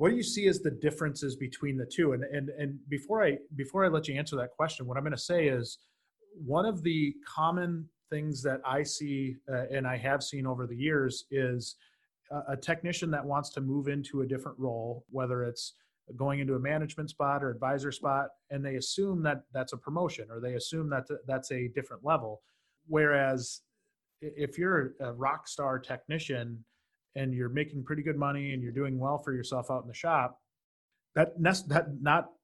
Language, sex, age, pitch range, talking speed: English, male, 30-49, 130-150 Hz, 200 wpm